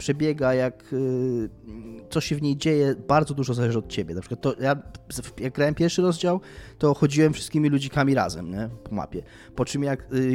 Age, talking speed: 20-39, 190 wpm